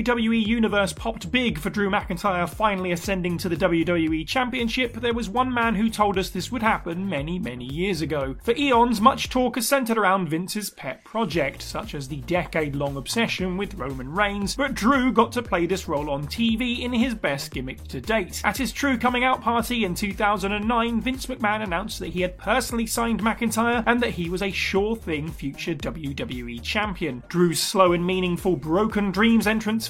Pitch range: 180-230 Hz